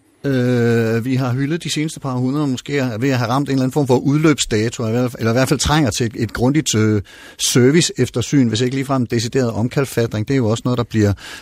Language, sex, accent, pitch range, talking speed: Danish, male, native, 110-140 Hz, 230 wpm